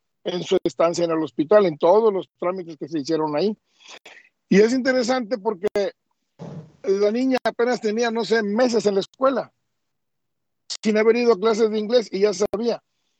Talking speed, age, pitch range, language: 175 wpm, 50-69, 170-210 Hz, Spanish